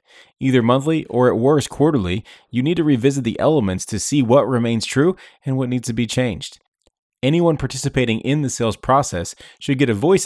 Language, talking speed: English, 195 wpm